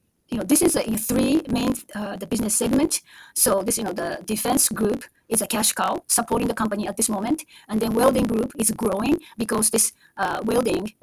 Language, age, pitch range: English, 30-49, 210-255 Hz